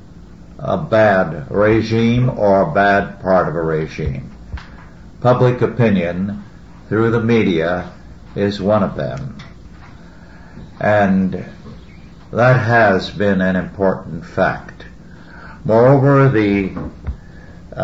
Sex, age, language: male, 60-79, English